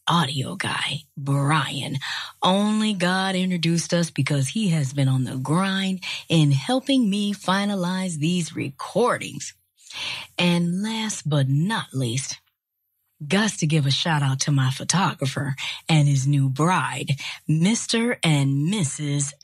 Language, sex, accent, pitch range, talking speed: English, female, American, 145-230 Hz, 125 wpm